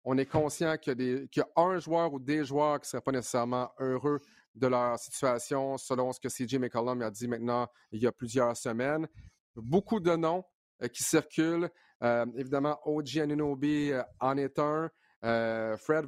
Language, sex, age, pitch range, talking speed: French, male, 40-59, 125-150 Hz, 180 wpm